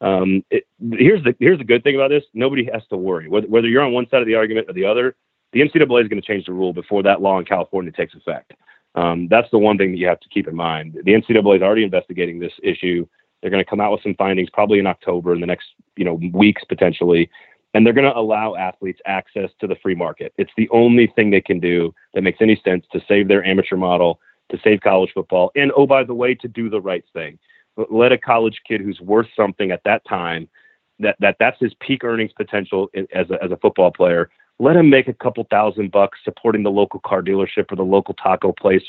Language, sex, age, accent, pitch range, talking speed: English, male, 30-49, American, 95-125 Hz, 245 wpm